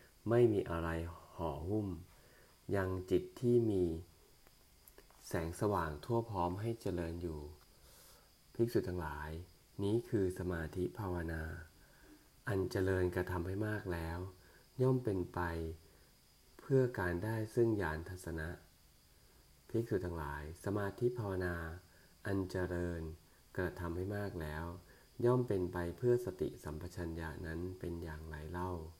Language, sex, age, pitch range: English, male, 30-49, 80-100 Hz